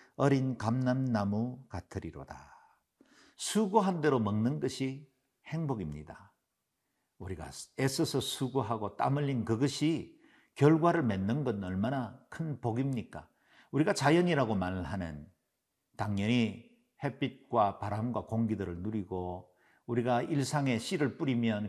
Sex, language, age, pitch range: male, Korean, 50-69, 105-145 Hz